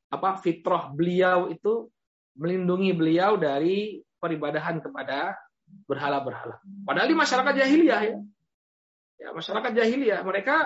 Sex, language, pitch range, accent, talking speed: male, Indonesian, 155-210 Hz, native, 105 wpm